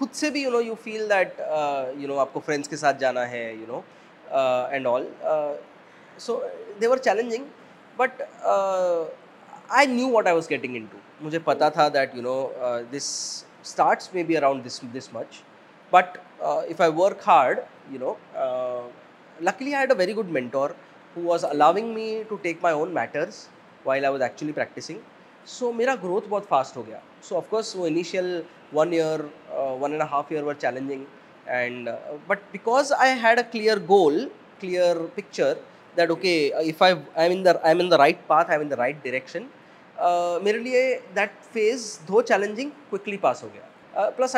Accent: native